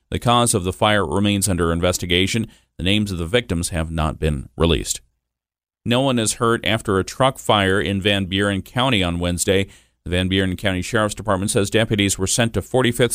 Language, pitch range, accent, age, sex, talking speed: English, 90-115 Hz, American, 40-59, male, 195 wpm